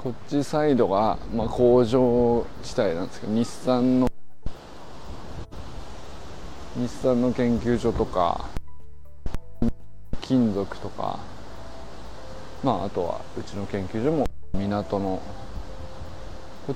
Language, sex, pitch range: Japanese, male, 85-120 Hz